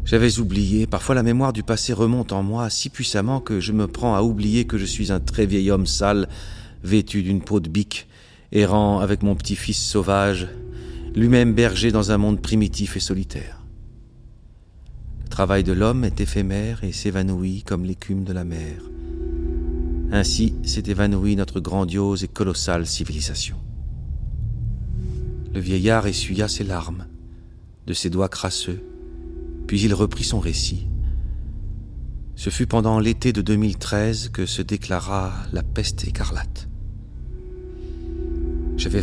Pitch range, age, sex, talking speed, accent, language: 90-110 Hz, 40-59, male, 140 wpm, French, French